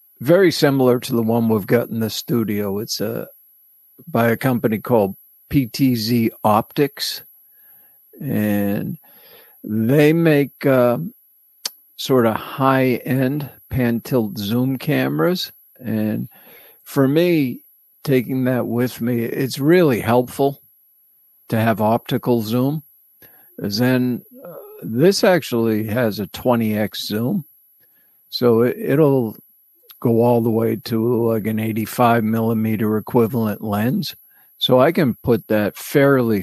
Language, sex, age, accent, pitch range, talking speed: English, male, 50-69, American, 110-140 Hz, 120 wpm